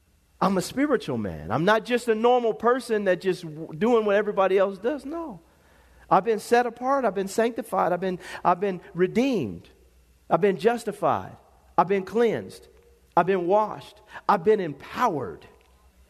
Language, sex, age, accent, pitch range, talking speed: English, male, 40-59, American, 200-285 Hz, 155 wpm